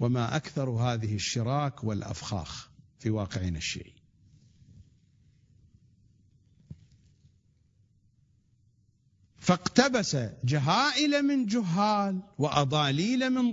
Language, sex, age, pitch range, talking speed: English, male, 50-69, 115-175 Hz, 60 wpm